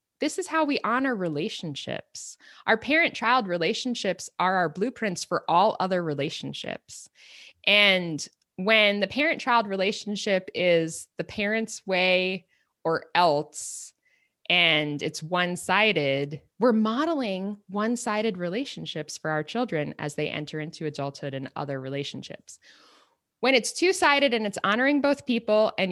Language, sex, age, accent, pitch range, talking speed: English, female, 20-39, American, 175-250 Hz, 125 wpm